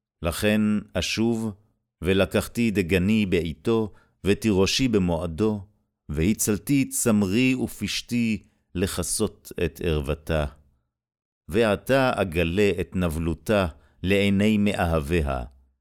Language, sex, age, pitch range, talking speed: Hebrew, male, 50-69, 75-105 Hz, 70 wpm